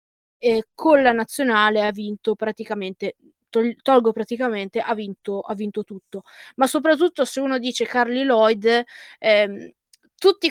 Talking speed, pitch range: 135 wpm, 215-255 Hz